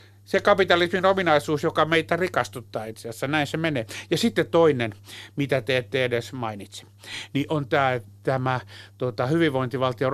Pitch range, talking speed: 120-150 Hz, 150 wpm